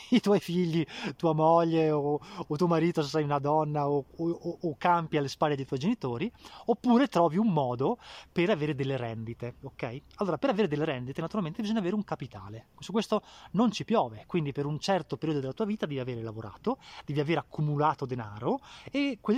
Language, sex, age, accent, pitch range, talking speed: Italian, male, 20-39, native, 130-180 Hz, 195 wpm